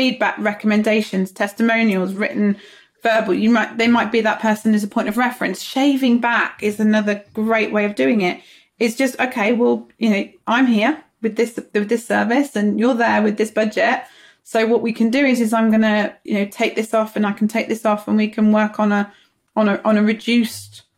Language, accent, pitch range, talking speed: English, British, 200-230 Hz, 215 wpm